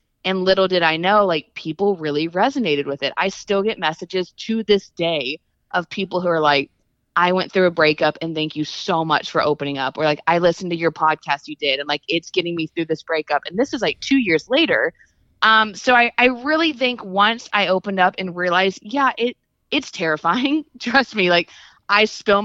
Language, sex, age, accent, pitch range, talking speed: English, female, 20-39, American, 155-205 Hz, 215 wpm